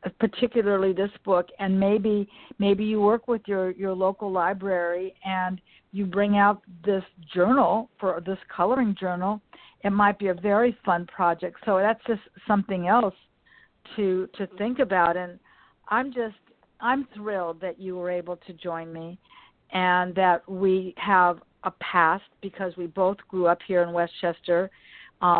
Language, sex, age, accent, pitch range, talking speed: English, female, 50-69, American, 175-205 Hz, 155 wpm